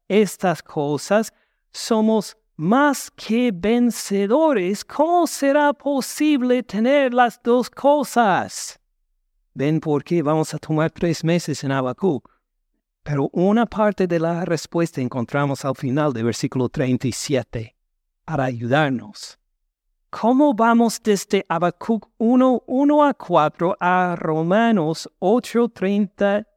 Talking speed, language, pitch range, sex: 110 wpm, Spanish, 145-220 Hz, male